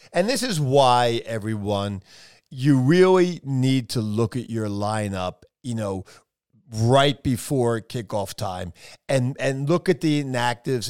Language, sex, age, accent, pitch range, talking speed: English, male, 50-69, American, 115-160 Hz, 140 wpm